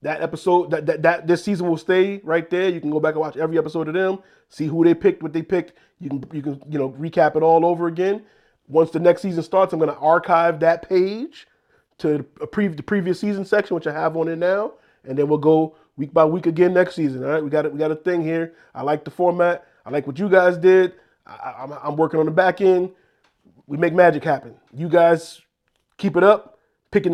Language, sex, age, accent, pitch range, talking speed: English, male, 20-39, American, 155-180 Hz, 245 wpm